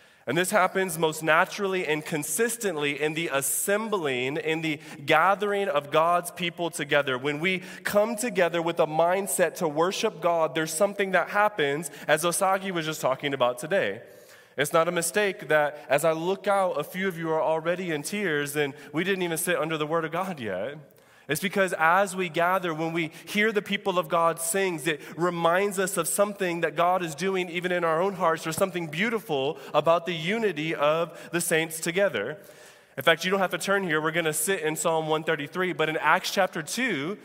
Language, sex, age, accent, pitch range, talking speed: English, male, 20-39, American, 155-190 Hz, 195 wpm